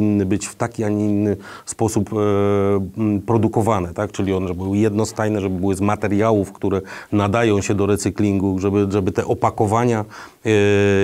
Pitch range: 100-115 Hz